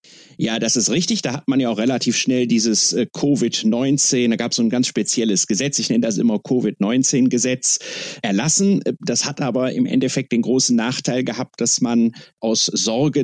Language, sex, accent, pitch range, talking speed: German, male, German, 110-145 Hz, 175 wpm